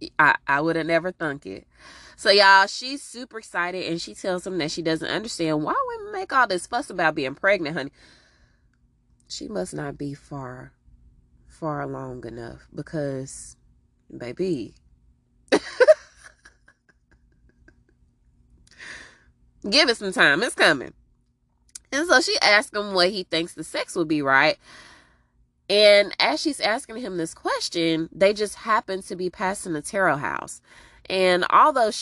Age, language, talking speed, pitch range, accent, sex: 20-39, English, 145 wpm, 140-225 Hz, American, female